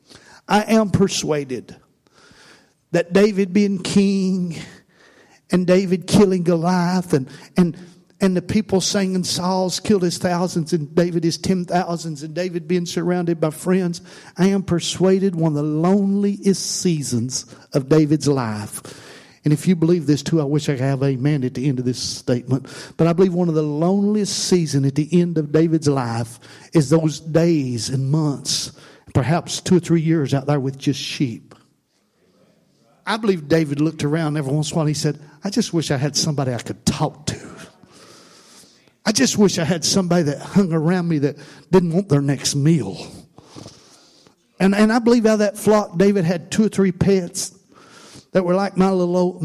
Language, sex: English, male